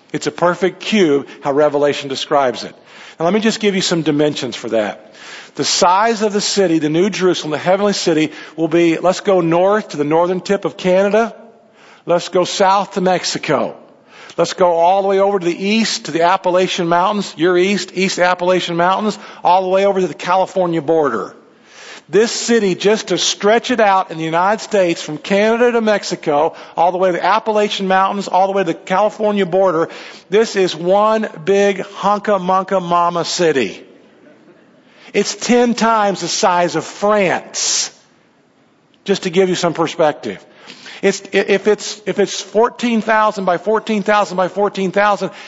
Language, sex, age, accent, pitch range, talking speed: English, male, 50-69, American, 175-210 Hz, 170 wpm